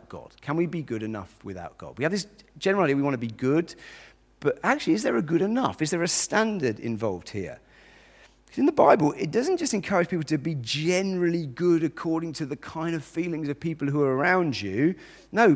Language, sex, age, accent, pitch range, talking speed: English, male, 40-59, British, 120-175 Hz, 220 wpm